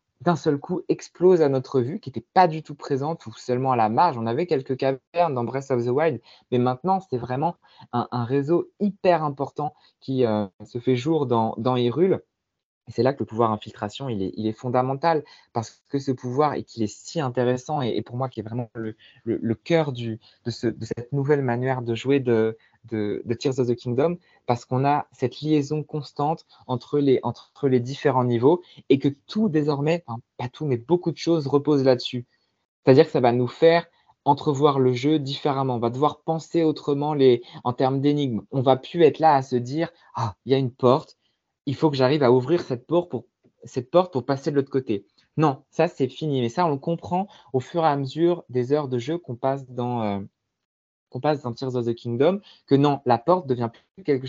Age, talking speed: 20-39, 225 wpm